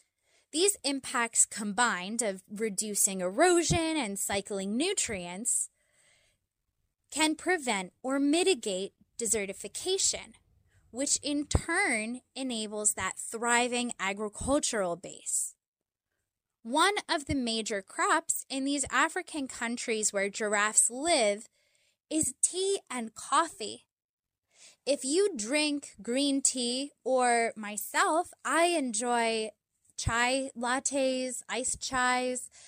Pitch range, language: 220-310 Hz, English